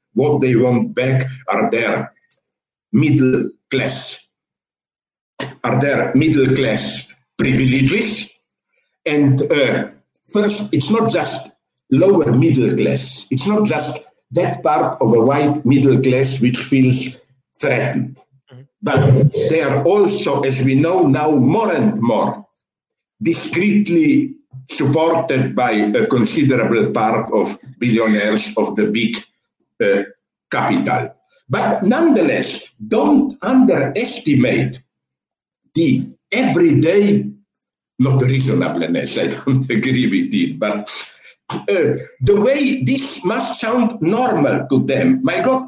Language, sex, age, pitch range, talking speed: English, male, 60-79, 130-175 Hz, 110 wpm